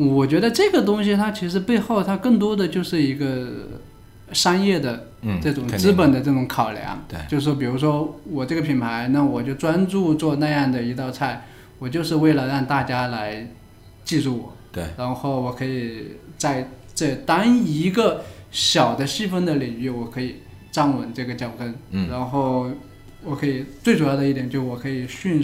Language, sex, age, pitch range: Chinese, male, 20-39, 125-155 Hz